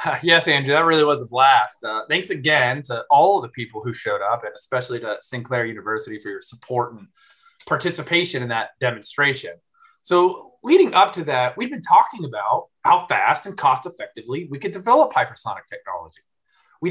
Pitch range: 135-205 Hz